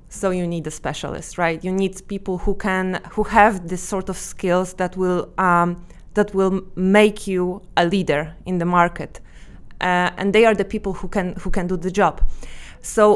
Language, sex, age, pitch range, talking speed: Polish, female, 20-39, 175-205 Hz, 195 wpm